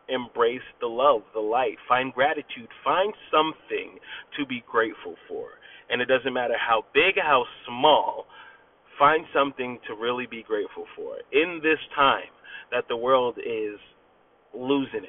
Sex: male